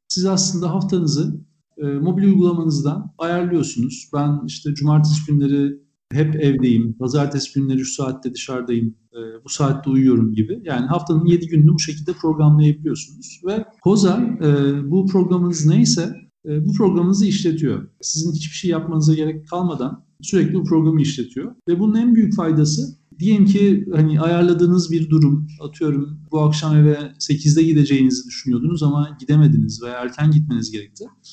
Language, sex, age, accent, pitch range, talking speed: Turkish, male, 50-69, native, 135-170 Hz, 140 wpm